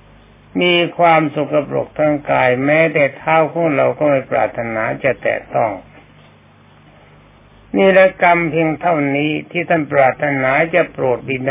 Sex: male